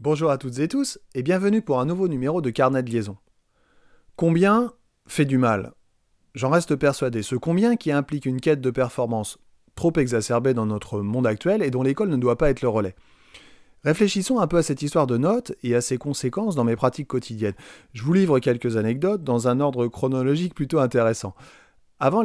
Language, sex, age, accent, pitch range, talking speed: French, male, 30-49, French, 115-165 Hz, 195 wpm